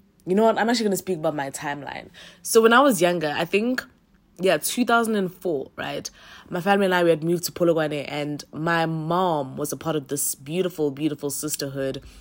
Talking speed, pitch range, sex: 200 wpm, 145-185 Hz, female